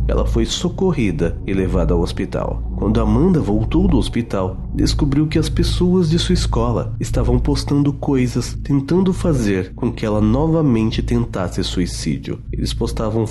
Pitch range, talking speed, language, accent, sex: 105-145 Hz, 145 wpm, Portuguese, Brazilian, male